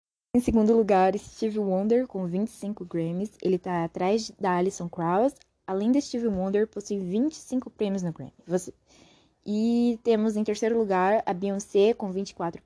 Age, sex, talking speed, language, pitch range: 10-29, female, 155 wpm, Portuguese, 185-230 Hz